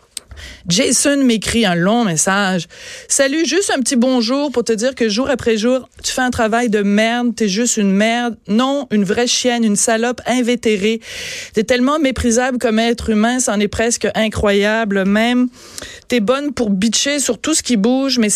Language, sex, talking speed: French, female, 185 wpm